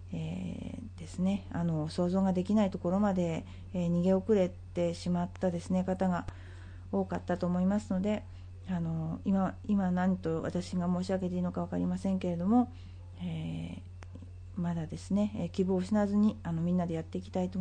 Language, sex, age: Japanese, female, 40-59